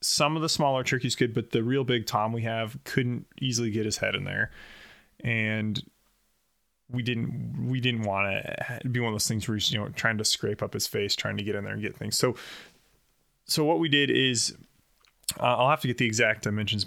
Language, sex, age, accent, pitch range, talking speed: English, male, 20-39, American, 110-130 Hz, 230 wpm